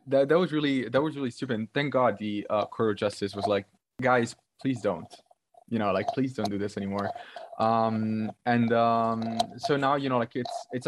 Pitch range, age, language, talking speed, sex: 105-125 Hz, 20-39, English, 215 wpm, male